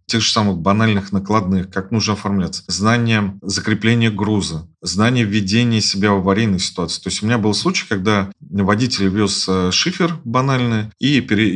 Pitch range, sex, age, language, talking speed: 95-120 Hz, male, 30-49, Russian, 150 wpm